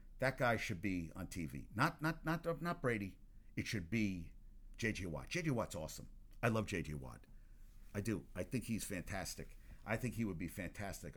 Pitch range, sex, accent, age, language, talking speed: 100-135 Hz, male, American, 50-69, English, 190 wpm